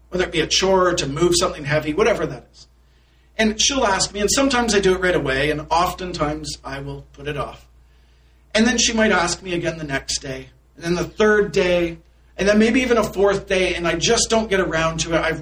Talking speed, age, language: 240 wpm, 50-69, English